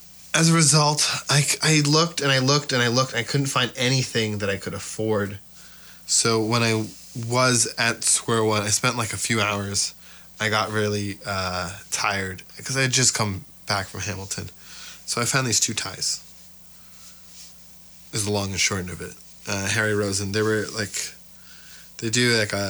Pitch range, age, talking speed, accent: 100-115 Hz, 20-39, 185 wpm, American